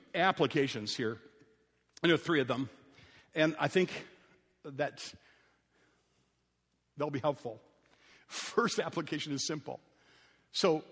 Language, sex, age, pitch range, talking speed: English, male, 50-69, 150-255 Hz, 105 wpm